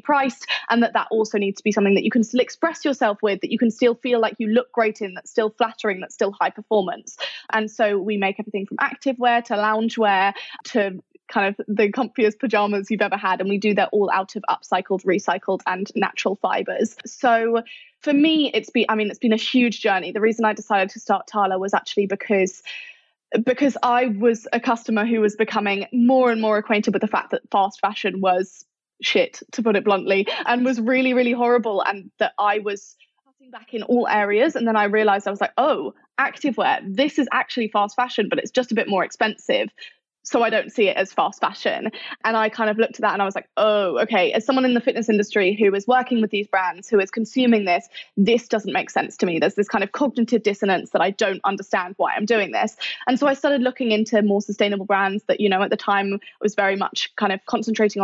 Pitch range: 200-245 Hz